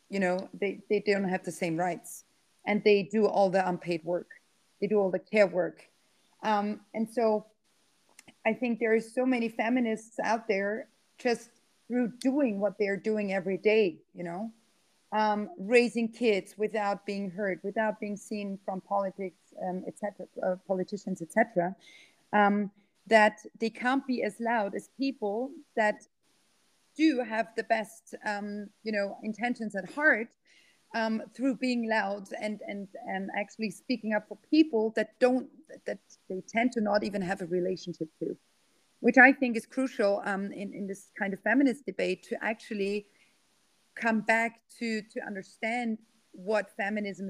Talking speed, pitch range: 160 wpm, 200-230 Hz